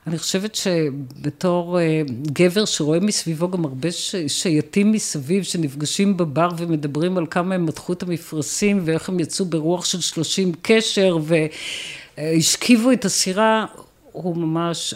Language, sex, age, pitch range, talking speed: Hebrew, female, 50-69, 155-200 Hz, 130 wpm